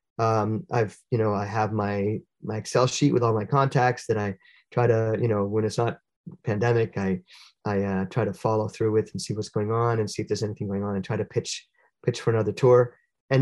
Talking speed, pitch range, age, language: 235 wpm, 110-135 Hz, 30-49, English